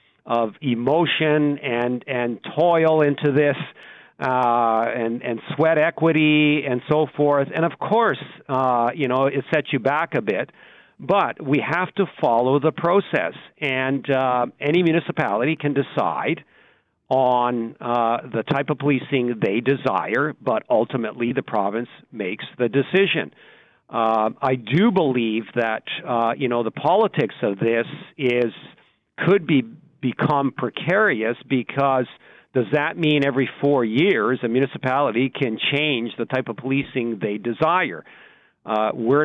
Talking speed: 140 wpm